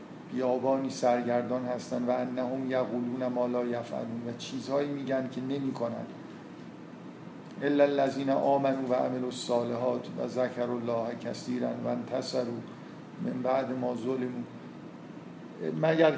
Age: 50-69